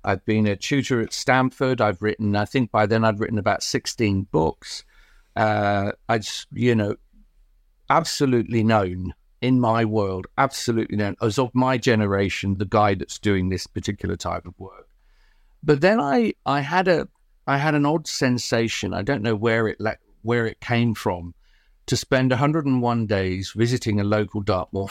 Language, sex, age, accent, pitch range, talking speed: English, male, 50-69, British, 105-130 Hz, 170 wpm